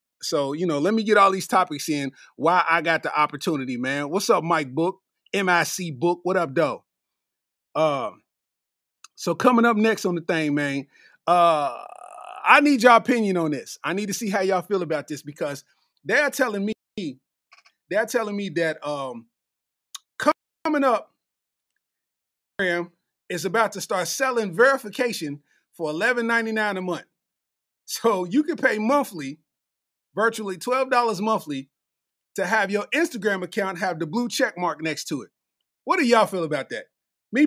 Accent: American